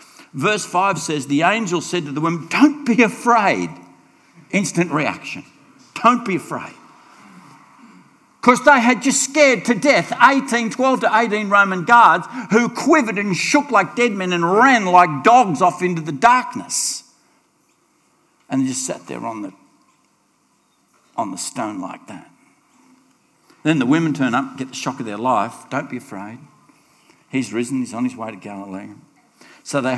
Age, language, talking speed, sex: 60-79, English, 165 wpm, male